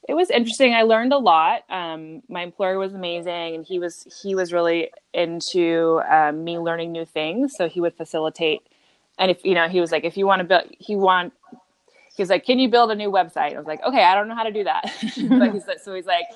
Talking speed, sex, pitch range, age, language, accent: 250 wpm, female, 160-205 Hz, 20-39, English, American